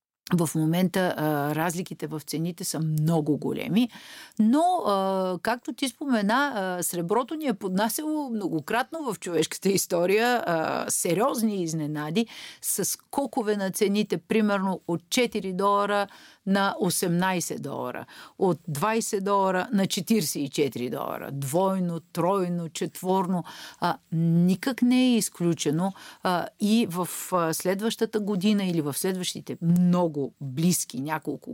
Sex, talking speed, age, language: female, 120 wpm, 50-69, Bulgarian